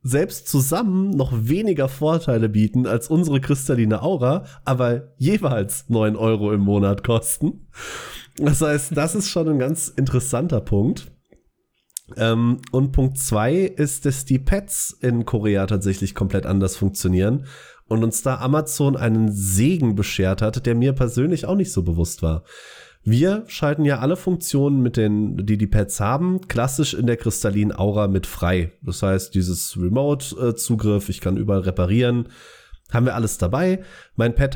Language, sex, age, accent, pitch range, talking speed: German, male, 30-49, German, 110-155 Hz, 150 wpm